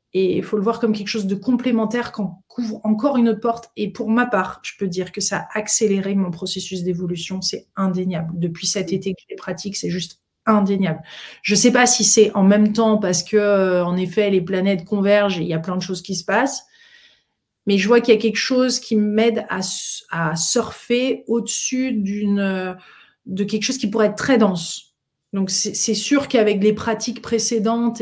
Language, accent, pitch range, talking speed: French, French, 195-230 Hz, 210 wpm